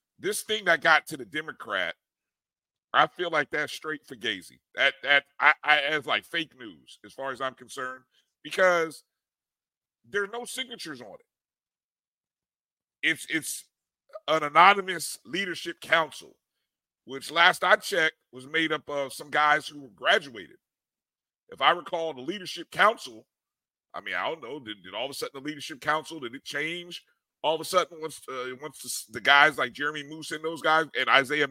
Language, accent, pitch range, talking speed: English, American, 135-170 Hz, 175 wpm